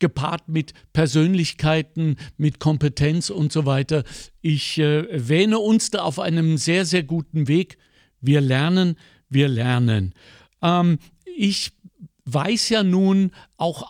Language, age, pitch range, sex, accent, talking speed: German, 60-79, 145-190 Hz, male, German, 125 wpm